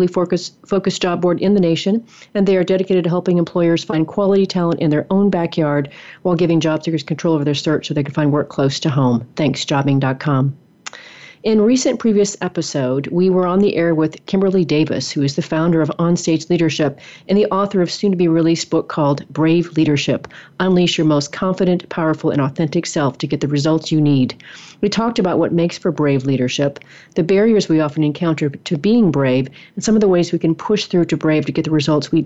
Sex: female